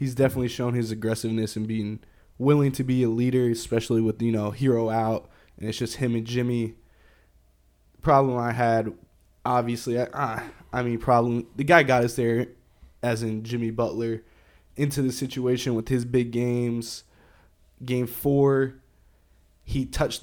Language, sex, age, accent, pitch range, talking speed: English, male, 20-39, American, 110-125 Hz, 155 wpm